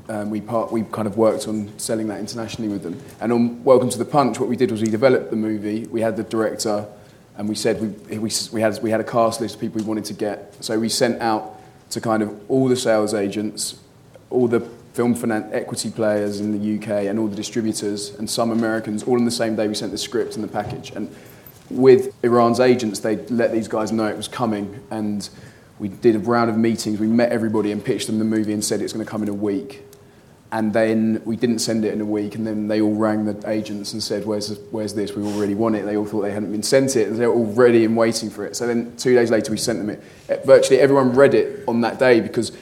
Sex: male